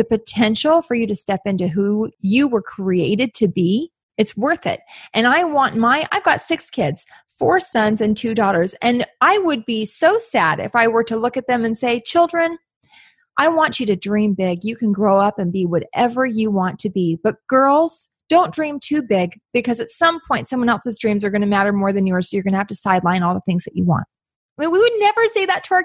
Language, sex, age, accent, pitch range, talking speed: English, female, 20-39, American, 205-315 Hz, 235 wpm